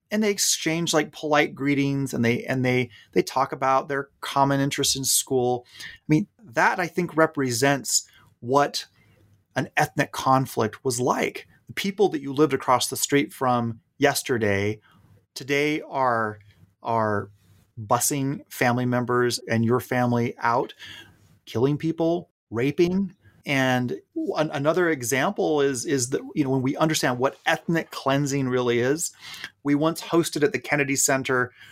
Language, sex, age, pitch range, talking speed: English, male, 30-49, 120-150 Hz, 145 wpm